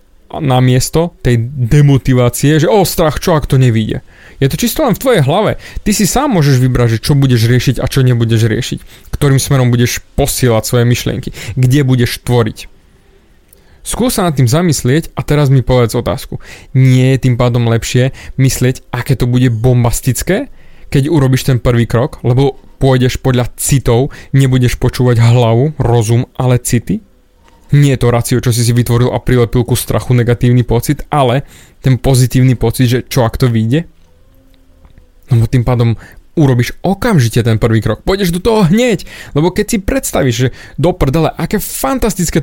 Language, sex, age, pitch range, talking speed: Slovak, male, 20-39, 120-155 Hz, 165 wpm